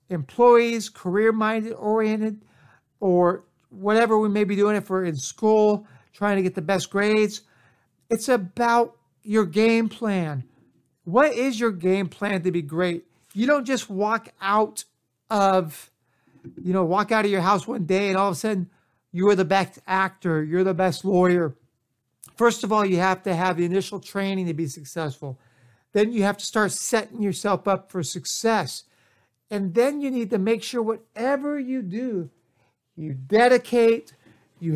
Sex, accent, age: male, American, 60-79